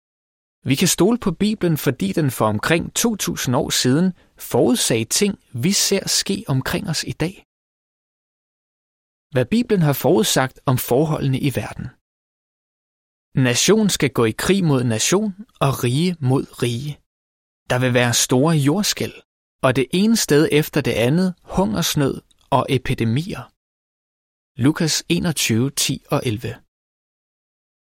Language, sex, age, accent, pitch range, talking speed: Danish, male, 20-39, native, 115-170 Hz, 130 wpm